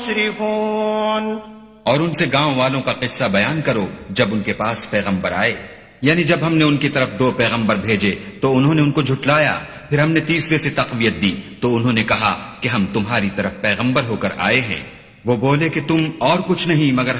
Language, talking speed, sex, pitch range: English, 175 wpm, male, 110-145 Hz